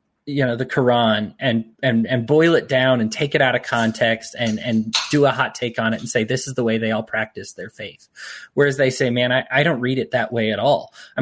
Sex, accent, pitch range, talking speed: male, American, 120-160 Hz, 260 wpm